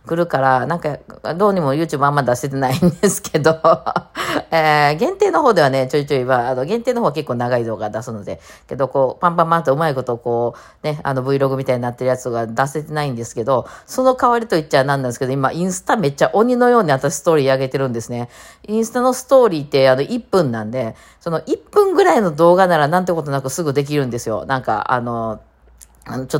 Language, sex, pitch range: Japanese, female, 120-155 Hz